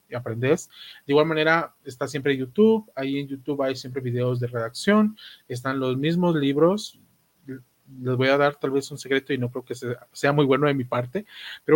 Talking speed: 195 wpm